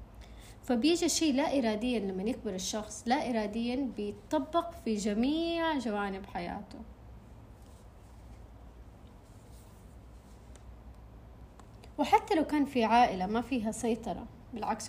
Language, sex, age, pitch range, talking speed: Arabic, female, 20-39, 215-270 Hz, 95 wpm